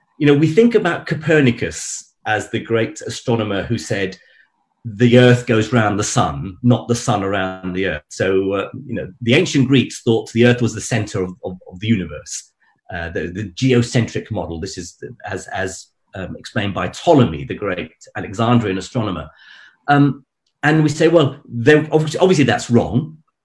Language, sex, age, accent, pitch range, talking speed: Hindi, male, 40-59, British, 115-155 Hz, 175 wpm